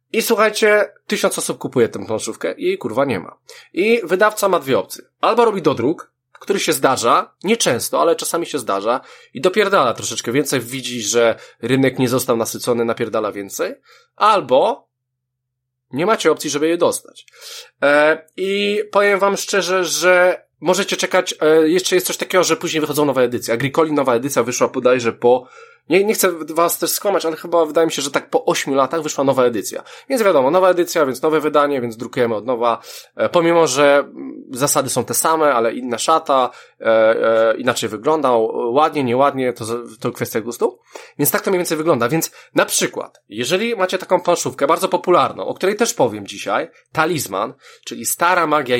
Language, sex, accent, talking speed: Polish, male, native, 175 wpm